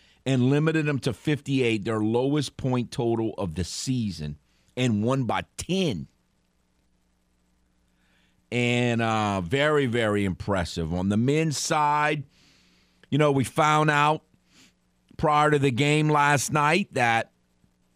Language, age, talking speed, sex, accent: English, 50-69, 125 wpm, male, American